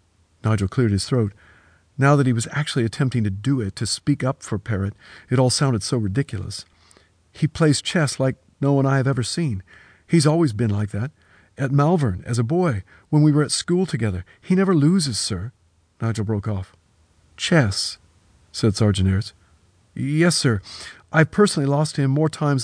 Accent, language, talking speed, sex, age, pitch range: American, English, 180 wpm, male, 50-69, 100-150 Hz